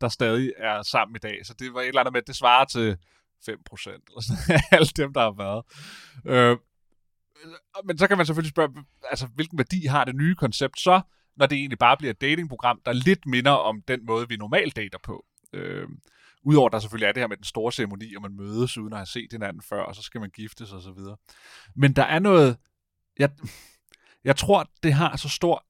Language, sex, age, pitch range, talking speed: Danish, male, 30-49, 115-150 Hz, 220 wpm